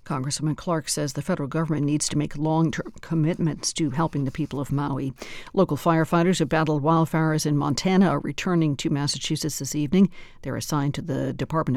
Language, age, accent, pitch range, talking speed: English, 60-79, American, 140-175 Hz, 180 wpm